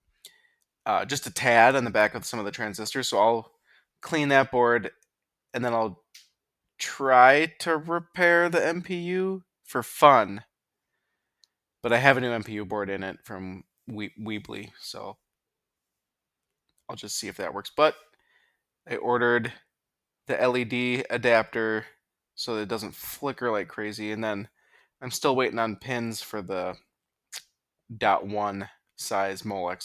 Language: English